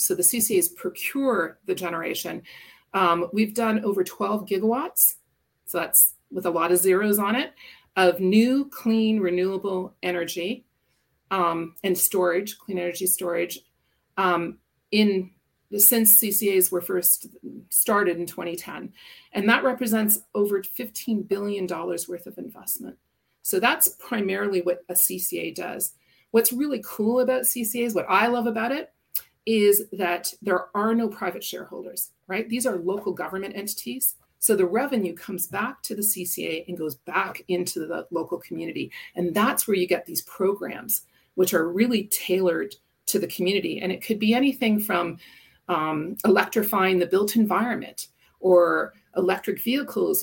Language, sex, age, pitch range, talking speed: English, female, 40-59, 180-225 Hz, 150 wpm